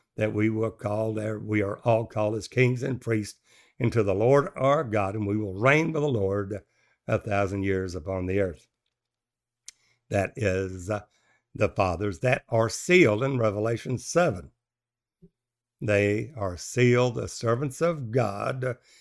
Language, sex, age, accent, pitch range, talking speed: English, male, 60-79, American, 105-140 Hz, 150 wpm